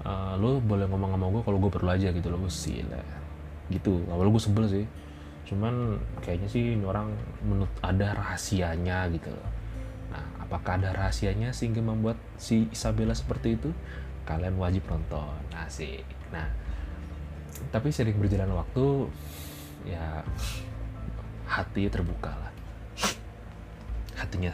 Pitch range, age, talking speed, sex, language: 85-110 Hz, 20-39, 120 wpm, male, Indonesian